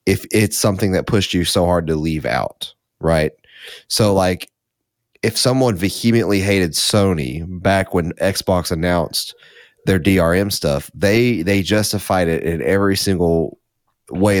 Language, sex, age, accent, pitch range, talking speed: English, male, 30-49, American, 85-105 Hz, 140 wpm